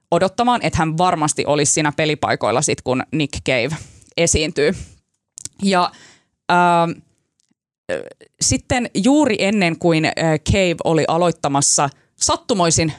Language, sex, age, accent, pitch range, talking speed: Finnish, female, 20-39, native, 155-205 Hz, 110 wpm